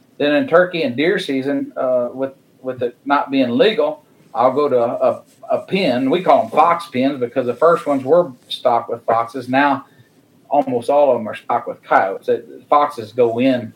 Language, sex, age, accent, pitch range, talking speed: English, male, 40-59, American, 125-155 Hz, 200 wpm